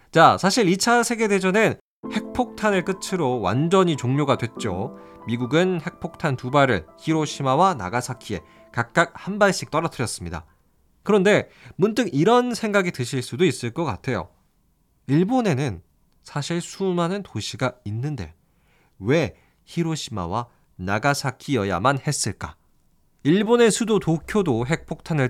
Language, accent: Korean, native